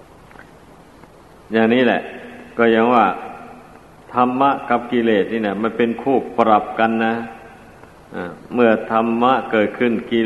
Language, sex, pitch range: Thai, male, 110-120 Hz